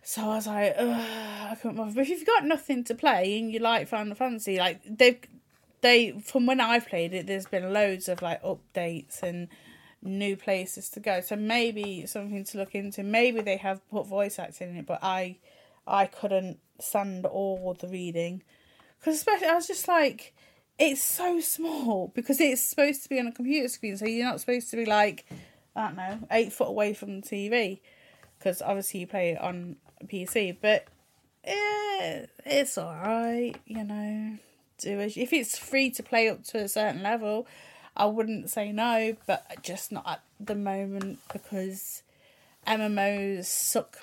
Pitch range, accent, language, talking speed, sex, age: 190-245 Hz, British, English, 185 wpm, female, 30-49